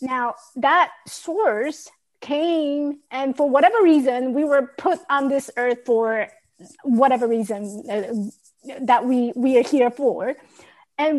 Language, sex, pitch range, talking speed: English, female, 225-295 Hz, 135 wpm